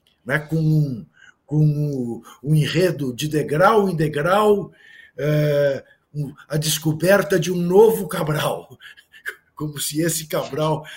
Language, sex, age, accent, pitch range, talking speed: Portuguese, male, 60-79, Brazilian, 135-195 Hz, 115 wpm